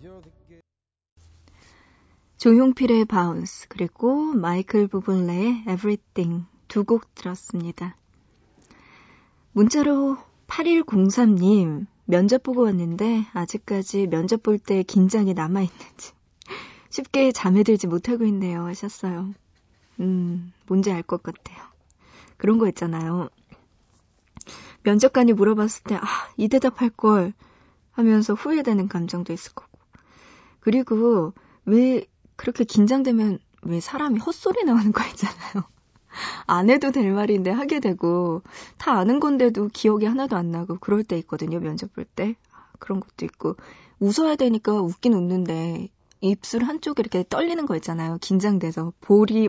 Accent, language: native, Korean